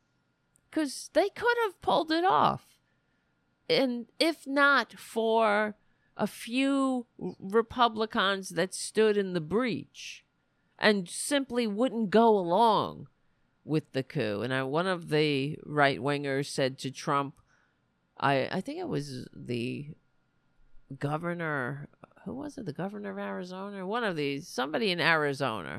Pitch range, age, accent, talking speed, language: 140-220 Hz, 50-69, American, 130 wpm, English